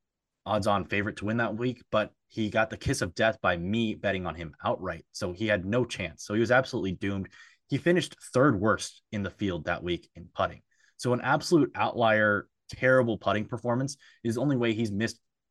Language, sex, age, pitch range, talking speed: English, male, 20-39, 95-120 Hz, 205 wpm